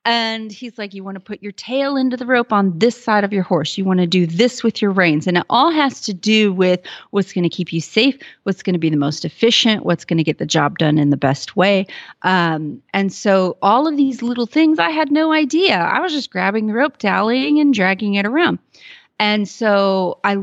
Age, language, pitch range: 30-49, English, 175-225 Hz